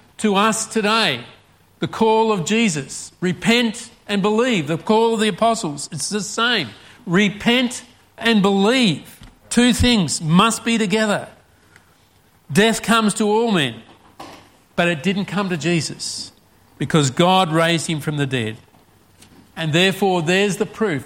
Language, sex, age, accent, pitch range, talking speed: English, male, 50-69, Australian, 145-205 Hz, 140 wpm